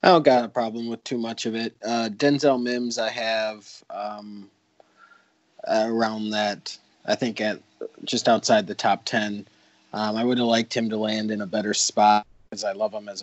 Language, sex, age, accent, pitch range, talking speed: English, male, 20-39, American, 110-125 Hz, 195 wpm